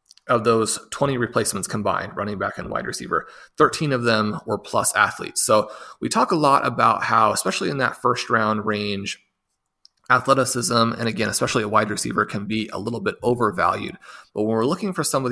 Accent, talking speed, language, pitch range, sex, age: American, 190 wpm, English, 105-125 Hz, male, 30-49